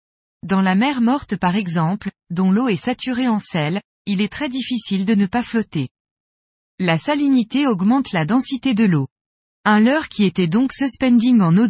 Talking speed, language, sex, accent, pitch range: 180 wpm, French, female, French, 185-250 Hz